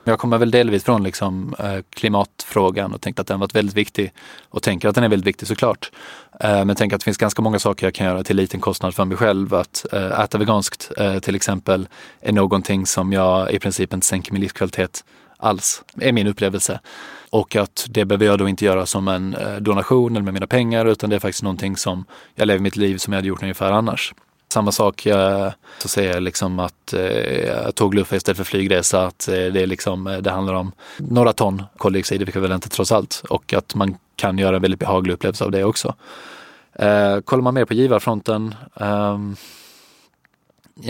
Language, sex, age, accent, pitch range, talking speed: Swedish, male, 20-39, native, 95-110 Hz, 205 wpm